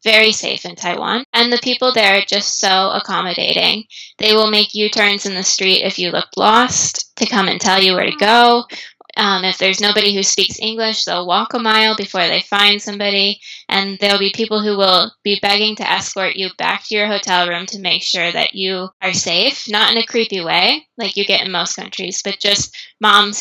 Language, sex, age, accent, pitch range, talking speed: English, female, 10-29, American, 190-220 Hz, 215 wpm